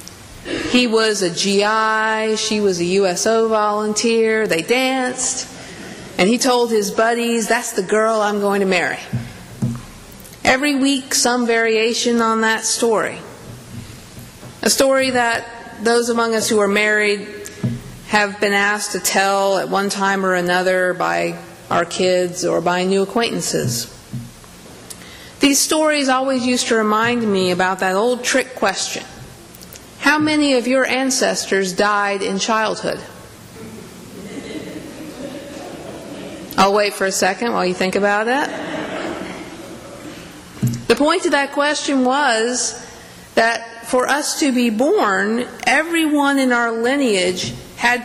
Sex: female